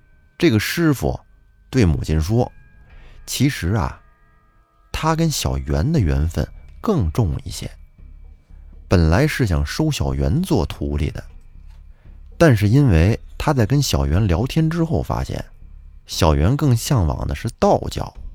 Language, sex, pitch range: Chinese, male, 70-110 Hz